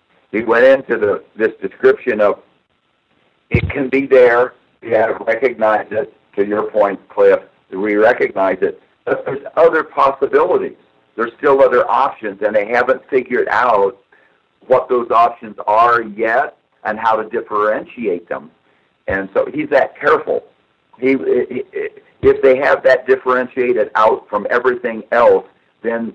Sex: male